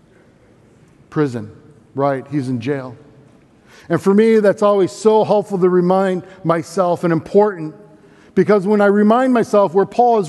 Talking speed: 145 wpm